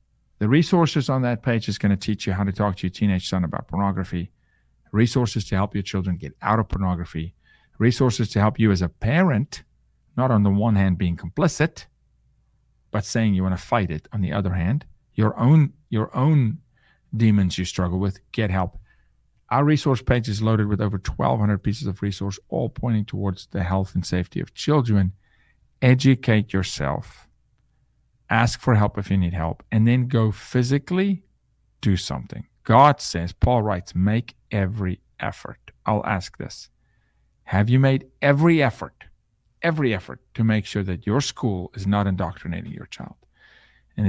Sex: male